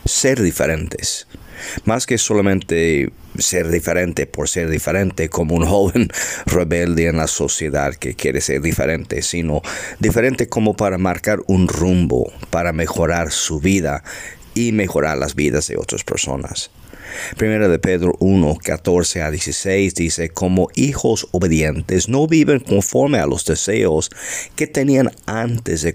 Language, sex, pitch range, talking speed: Spanish, male, 85-100 Hz, 140 wpm